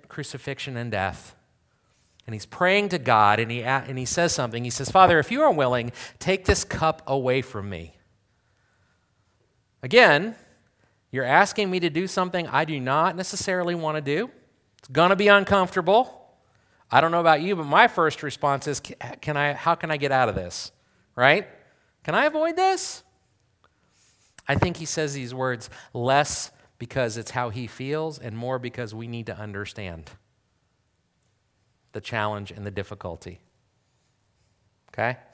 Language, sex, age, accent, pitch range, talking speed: English, male, 40-59, American, 110-170 Hz, 155 wpm